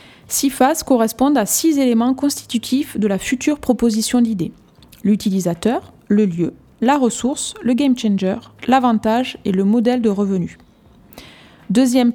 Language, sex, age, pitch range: French, female, 20-39, 210-265 Hz